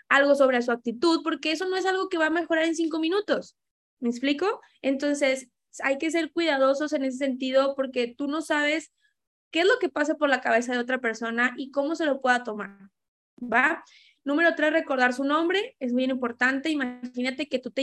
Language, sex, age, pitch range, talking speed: Spanish, female, 20-39, 245-300 Hz, 200 wpm